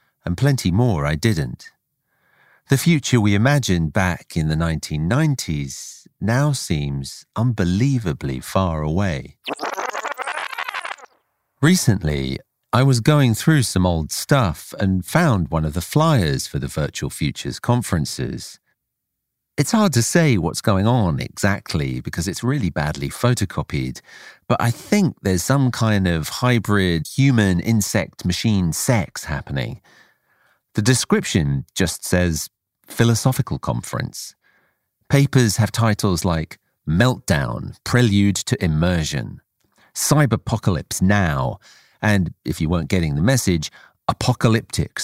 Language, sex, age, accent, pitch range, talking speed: English, male, 40-59, British, 80-120 Hz, 115 wpm